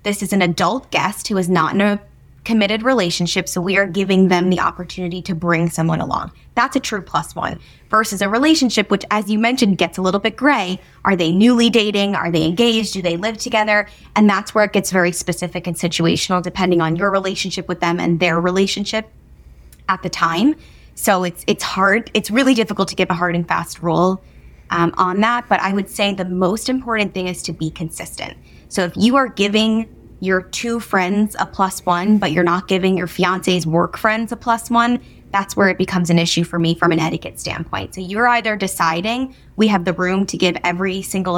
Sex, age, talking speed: female, 20-39, 215 wpm